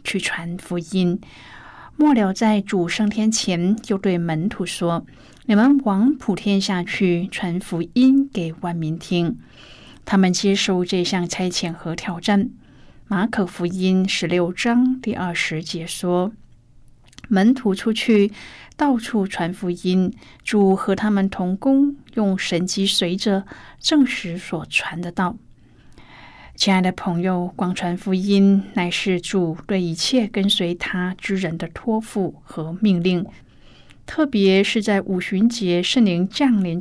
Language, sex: Chinese, female